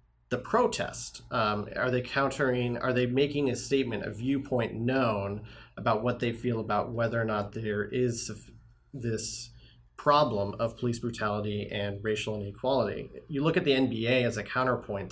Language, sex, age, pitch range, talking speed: English, male, 30-49, 110-130 Hz, 160 wpm